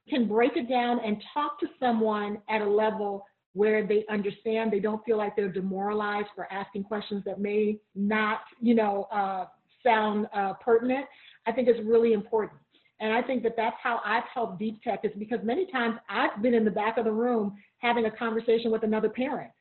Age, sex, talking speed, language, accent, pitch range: 40-59, female, 200 wpm, English, American, 210-245 Hz